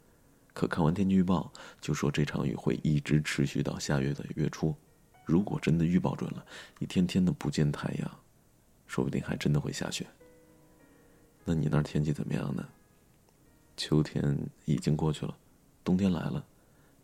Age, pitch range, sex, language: 30-49, 75-85 Hz, male, Chinese